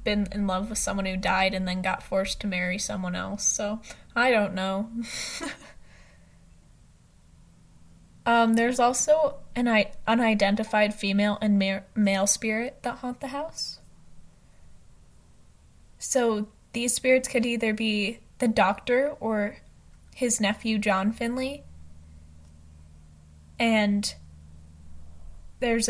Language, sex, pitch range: English, female, 190-225 Hz